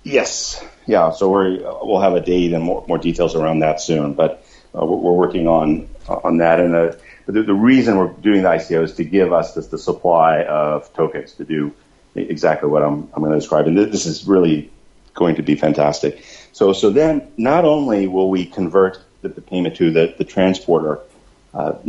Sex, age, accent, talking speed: male, 40-59, American, 200 wpm